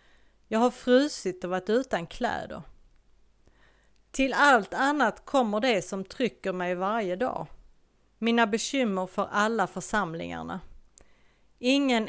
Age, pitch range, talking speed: 30-49, 180-230 Hz, 115 wpm